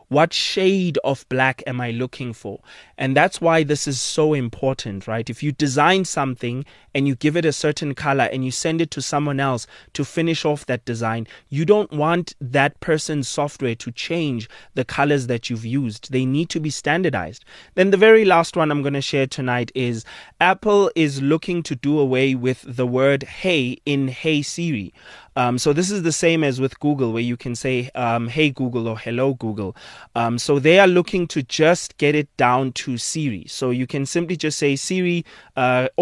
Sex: male